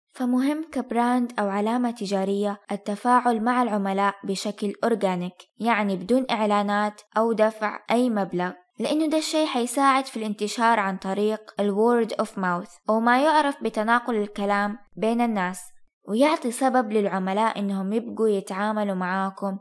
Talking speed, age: 130 wpm, 10-29